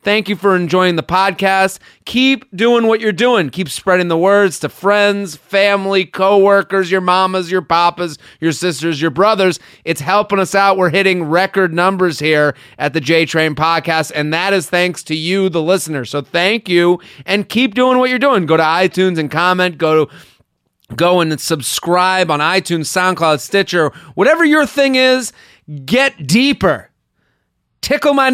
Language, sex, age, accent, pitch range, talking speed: English, male, 30-49, American, 155-200 Hz, 165 wpm